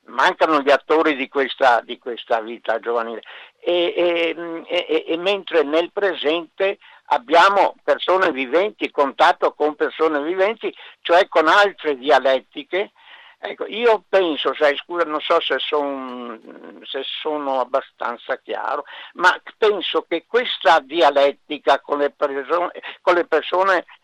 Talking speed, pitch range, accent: 125 wpm, 140-185 Hz, native